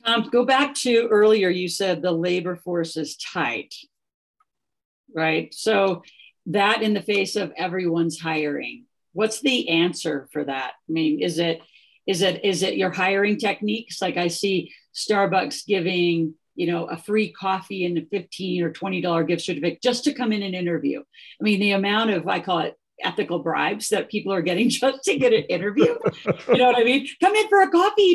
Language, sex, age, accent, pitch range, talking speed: English, female, 50-69, American, 170-225 Hz, 190 wpm